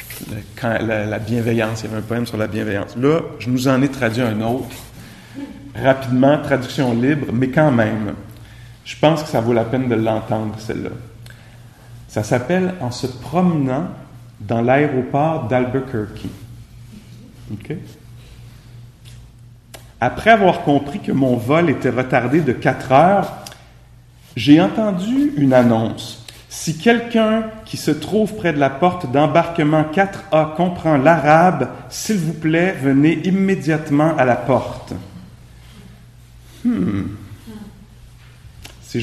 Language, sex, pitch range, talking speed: English, male, 115-155 Hz, 125 wpm